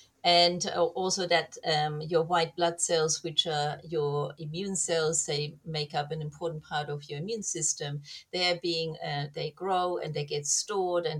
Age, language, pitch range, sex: 40-59, English, 150-180 Hz, female